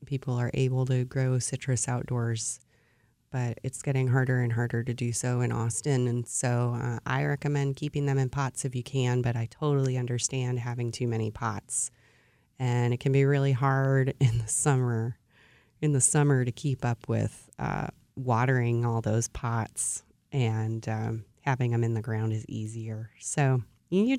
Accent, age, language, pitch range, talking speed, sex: American, 30-49, English, 120-145 Hz, 175 wpm, female